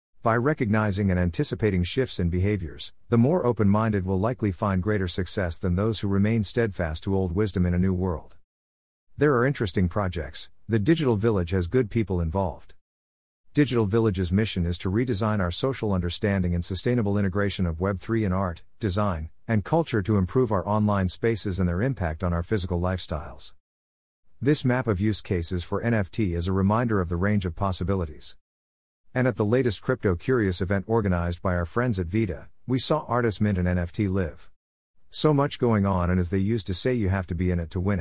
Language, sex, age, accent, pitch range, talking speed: English, male, 50-69, American, 90-115 Hz, 195 wpm